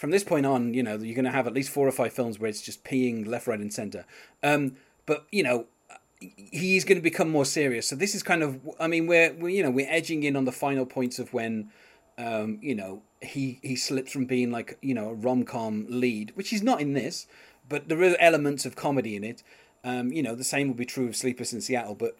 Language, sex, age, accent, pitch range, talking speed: English, male, 30-49, British, 115-155 Hz, 255 wpm